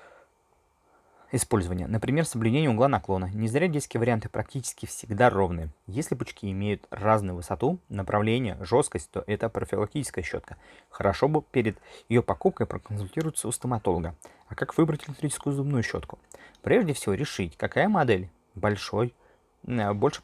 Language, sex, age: Russian, male, 20-39